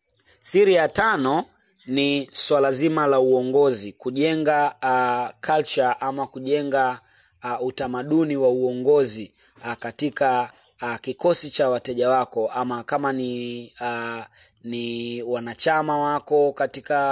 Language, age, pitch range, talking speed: Swahili, 30-49, 125-145 Hz, 105 wpm